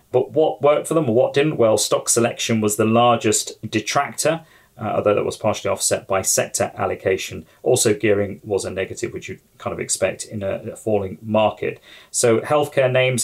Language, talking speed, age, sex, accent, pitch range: English, 190 wpm, 30-49, male, British, 105-125 Hz